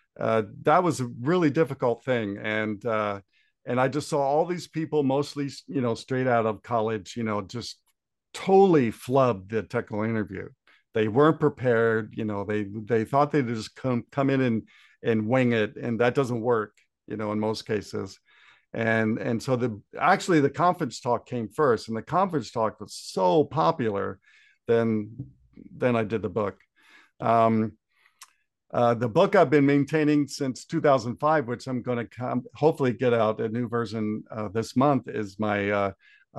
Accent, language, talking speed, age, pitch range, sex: American, English, 175 wpm, 50-69, 110-130 Hz, male